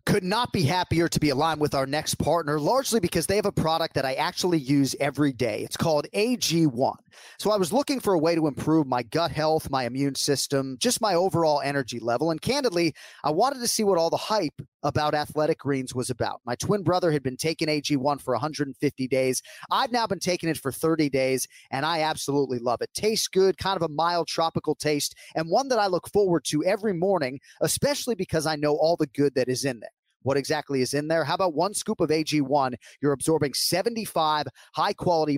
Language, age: English, 30-49